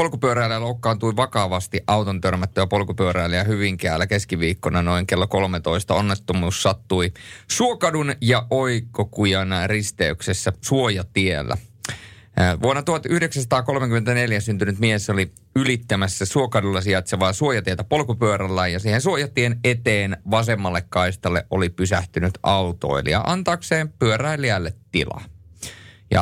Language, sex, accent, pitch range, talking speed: Finnish, male, native, 95-120 Hz, 95 wpm